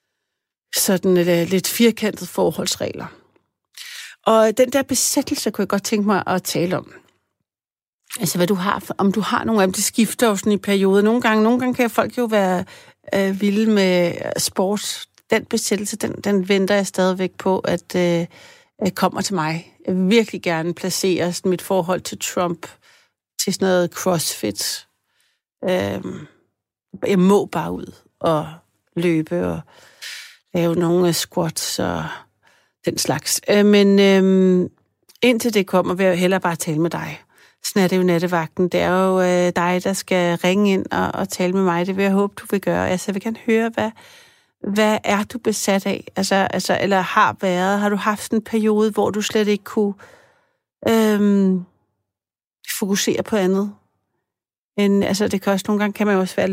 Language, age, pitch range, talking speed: Danish, 60-79, 180-210 Hz, 175 wpm